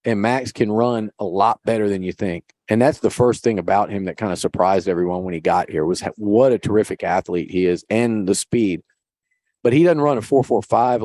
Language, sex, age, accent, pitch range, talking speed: English, male, 40-59, American, 100-125 Hz, 230 wpm